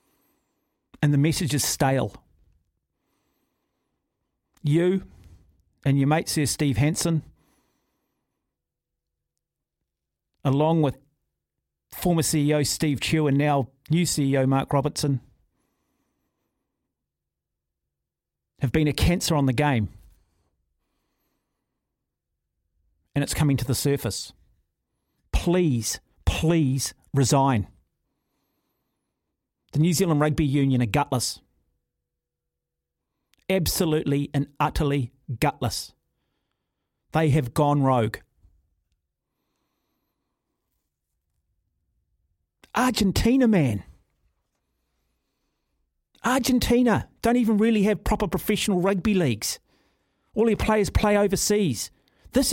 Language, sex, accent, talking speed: English, male, Australian, 80 wpm